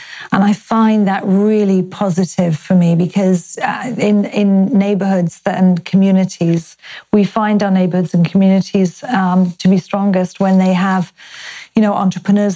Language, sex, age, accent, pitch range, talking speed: English, female, 40-59, British, 185-210 Hz, 150 wpm